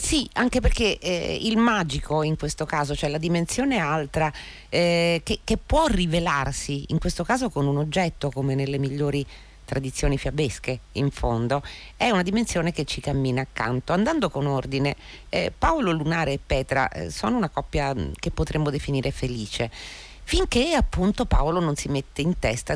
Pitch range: 120-170 Hz